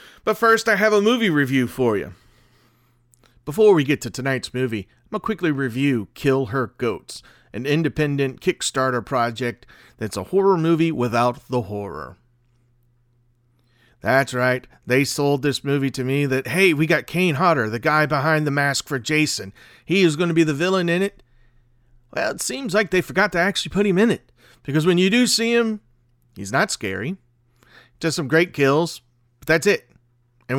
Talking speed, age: 180 wpm, 40-59